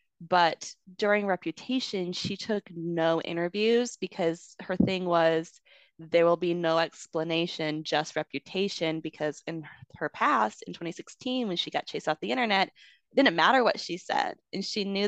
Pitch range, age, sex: 165-205 Hz, 20-39, female